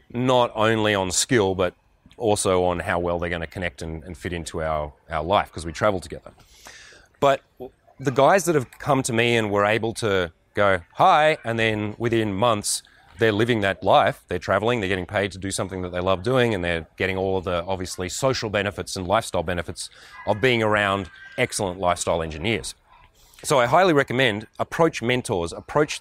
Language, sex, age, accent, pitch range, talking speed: English, male, 30-49, Australian, 95-125 Hz, 190 wpm